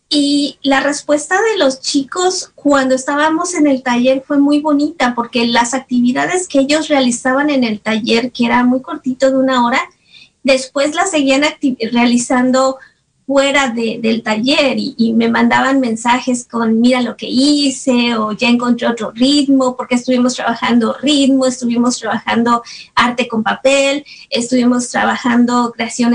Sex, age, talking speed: female, 30-49, 145 wpm